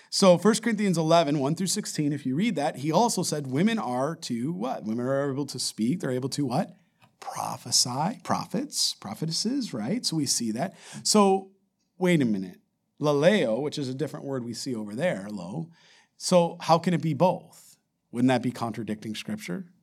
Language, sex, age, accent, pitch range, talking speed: English, male, 50-69, American, 135-185 Hz, 185 wpm